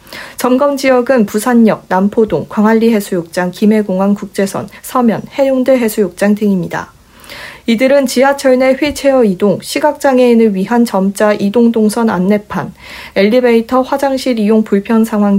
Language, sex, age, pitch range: Korean, female, 40-59, 200-255 Hz